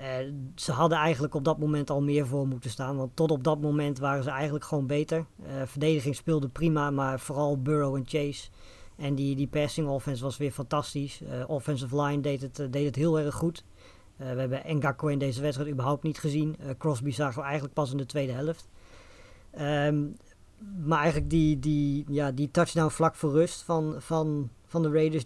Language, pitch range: Dutch, 140-155 Hz